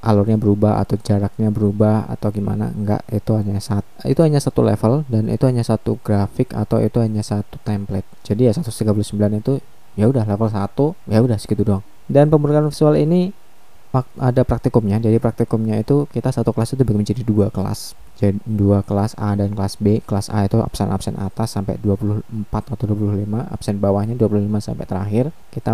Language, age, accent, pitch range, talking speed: Indonesian, 20-39, native, 100-115 Hz, 175 wpm